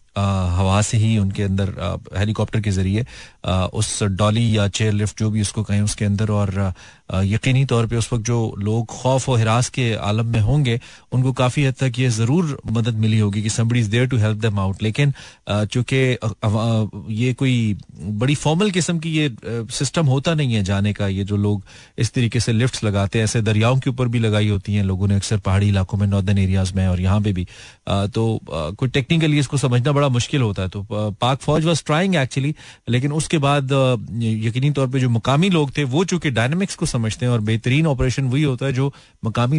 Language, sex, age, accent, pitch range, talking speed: Hindi, male, 30-49, native, 105-135 Hz, 180 wpm